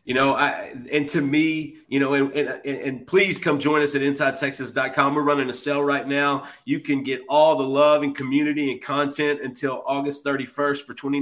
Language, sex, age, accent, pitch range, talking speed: English, male, 30-49, American, 135-150 Hz, 200 wpm